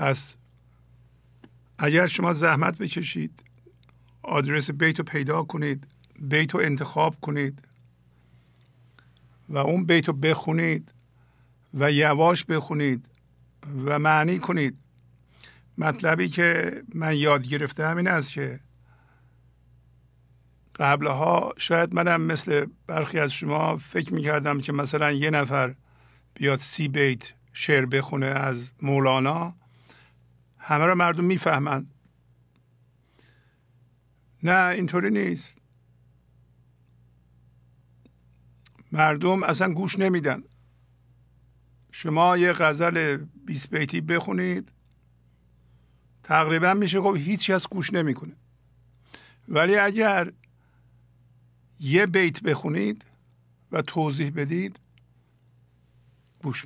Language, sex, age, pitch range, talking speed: English, male, 50-69, 120-155 Hz, 90 wpm